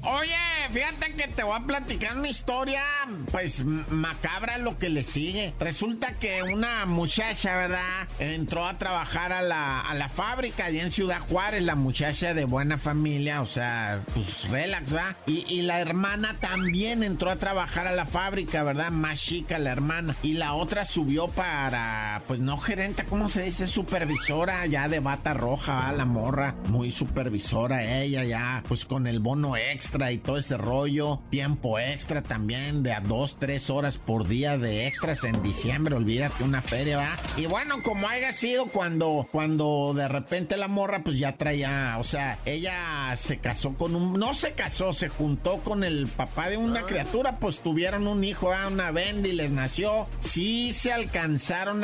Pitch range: 140-190 Hz